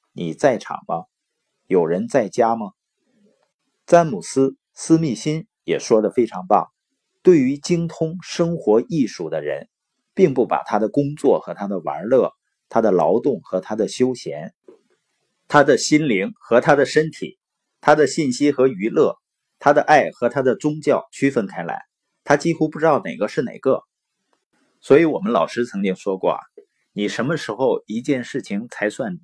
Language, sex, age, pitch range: Chinese, male, 50-69, 115-170 Hz